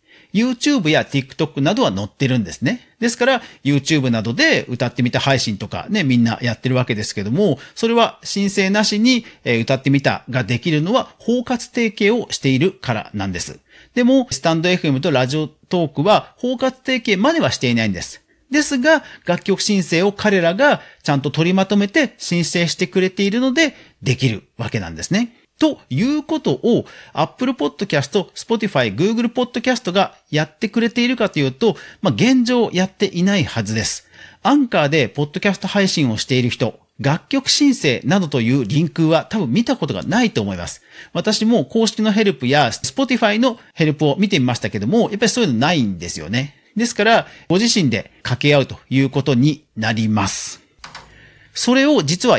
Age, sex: 40-59, male